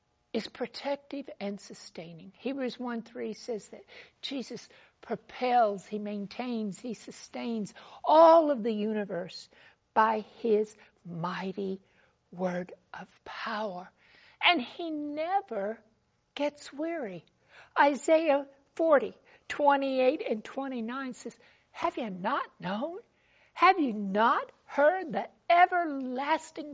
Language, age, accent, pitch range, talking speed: English, 60-79, American, 220-295 Hz, 105 wpm